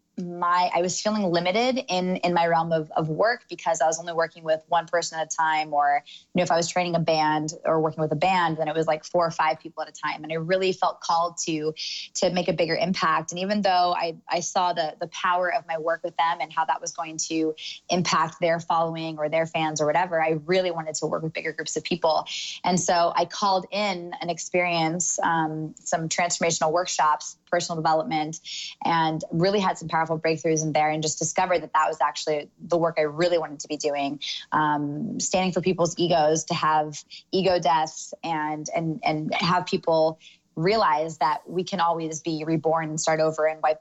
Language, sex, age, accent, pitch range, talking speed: English, female, 20-39, American, 160-175 Hz, 220 wpm